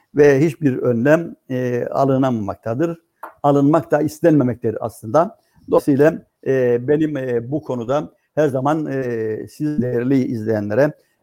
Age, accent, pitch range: 60-79, native, 135-185 Hz